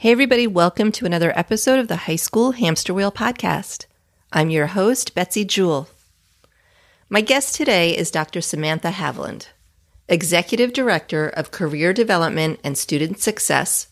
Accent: American